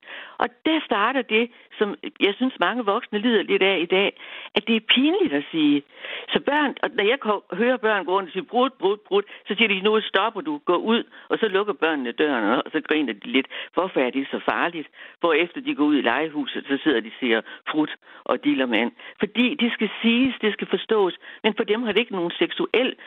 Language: Danish